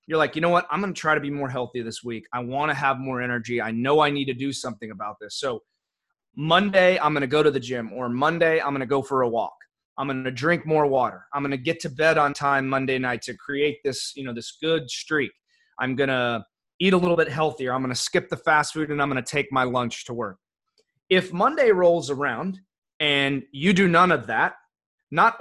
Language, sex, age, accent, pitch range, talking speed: English, male, 30-49, American, 135-180 Hz, 255 wpm